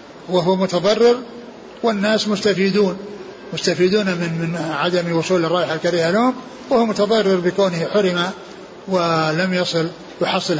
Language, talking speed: Arabic, 110 wpm